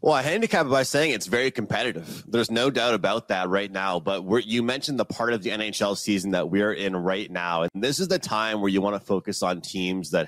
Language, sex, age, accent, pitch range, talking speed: English, male, 30-49, American, 100-125 Hz, 245 wpm